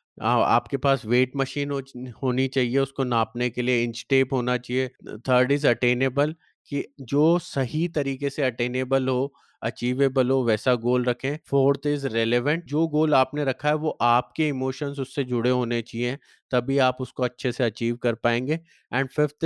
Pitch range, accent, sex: 120-140 Hz, native, male